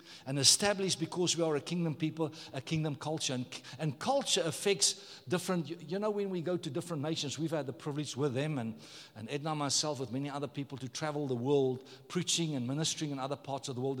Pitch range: 140-180 Hz